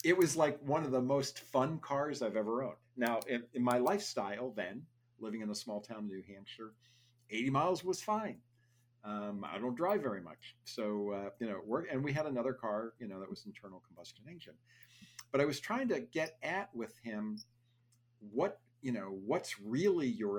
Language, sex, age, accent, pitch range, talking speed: English, male, 50-69, American, 115-135 Hz, 195 wpm